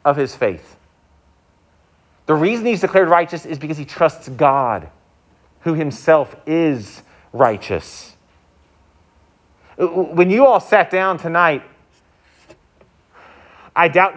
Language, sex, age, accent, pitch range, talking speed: English, male, 40-59, American, 125-190 Hz, 105 wpm